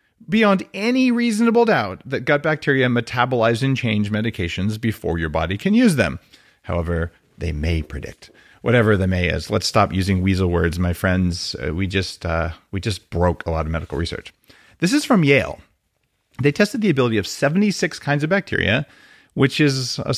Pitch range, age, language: 95-145 Hz, 40-59, English